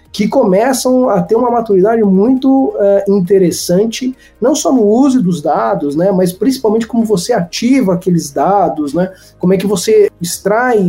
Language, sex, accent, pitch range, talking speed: Portuguese, male, Brazilian, 170-220 Hz, 160 wpm